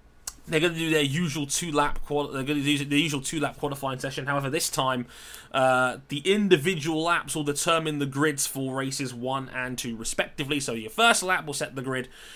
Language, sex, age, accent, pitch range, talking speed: English, male, 20-39, British, 120-150 Hz, 215 wpm